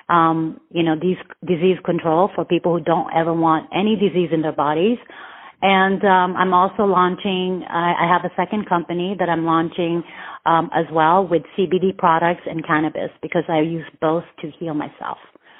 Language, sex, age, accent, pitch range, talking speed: English, female, 30-49, American, 165-190 Hz, 175 wpm